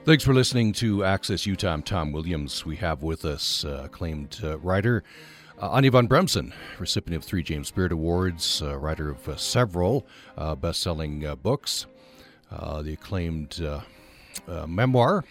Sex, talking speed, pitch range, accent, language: male, 160 wpm, 80-110 Hz, American, English